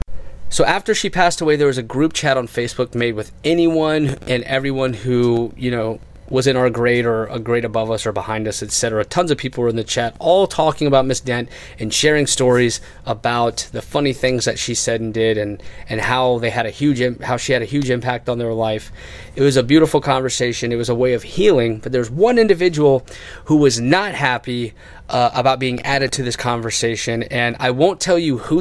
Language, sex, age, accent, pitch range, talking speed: English, male, 30-49, American, 120-150 Hz, 220 wpm